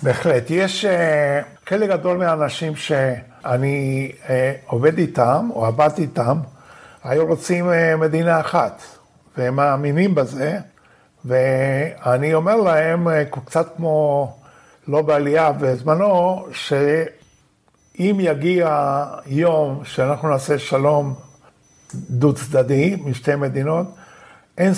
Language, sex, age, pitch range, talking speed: Hebrew, male, 50-69, 140-175 Hz, 90 wpm